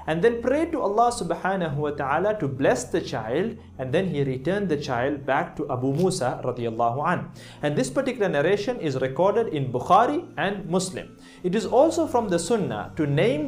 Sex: male